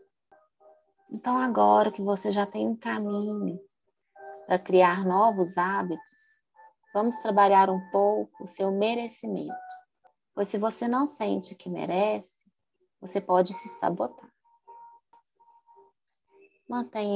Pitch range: 180-260 Hz